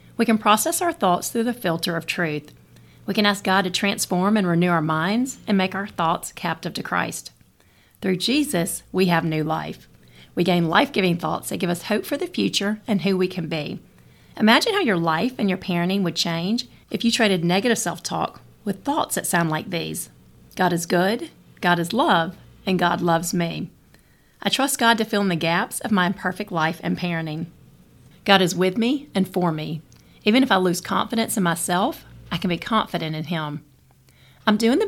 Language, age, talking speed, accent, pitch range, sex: English, 40-59, 200 wpm, American, 165-215 Hz, female